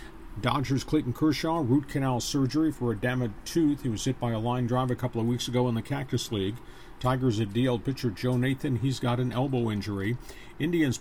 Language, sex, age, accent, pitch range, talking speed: English, male, 50-69, American, 115-135 Hz, 205 wpm